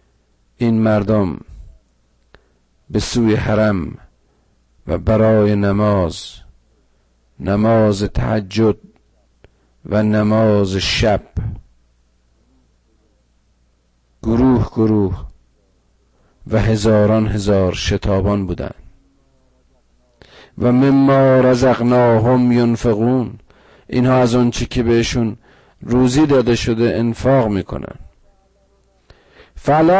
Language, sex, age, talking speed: Persian, male, 50-69, 70 wpm